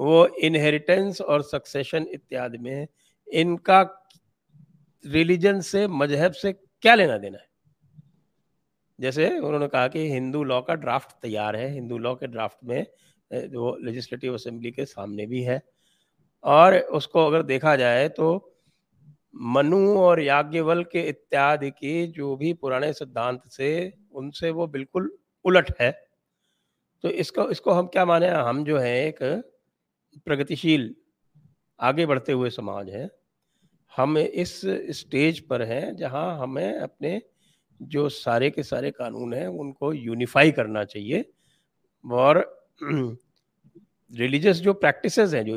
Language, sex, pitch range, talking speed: English, male, 130-175 Hz, 130 wpm